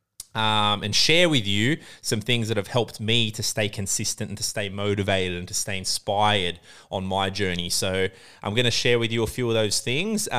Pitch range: 100-130 Hz